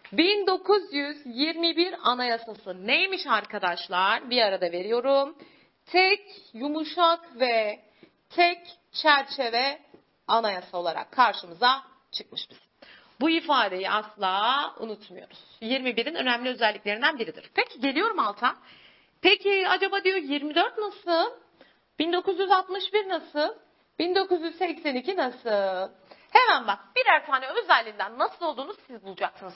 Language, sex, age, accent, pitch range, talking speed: Turkish, female, 40-59, native, 235-370 Hz, 95 wpm